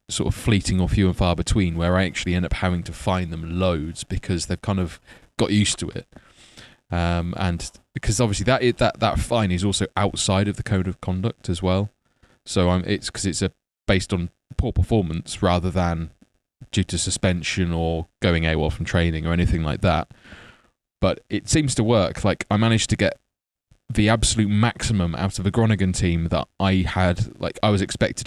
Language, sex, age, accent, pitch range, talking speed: English, male, 20-39, British, 85-105 Hz, 195 wpm